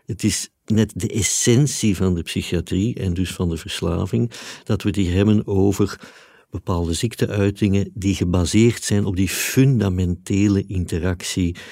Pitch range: 95-110 Hz